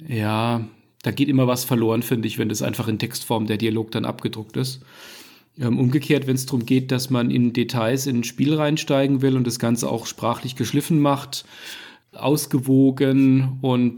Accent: German